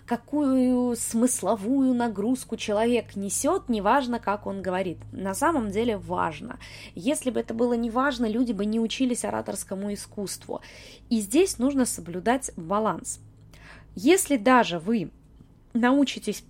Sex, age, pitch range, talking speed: female, 20-39, 205-270 Hz, 120 wpm